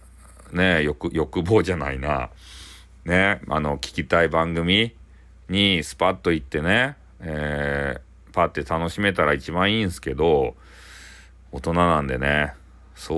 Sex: male